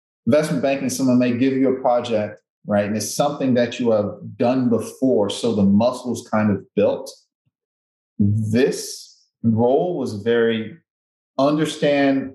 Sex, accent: male, American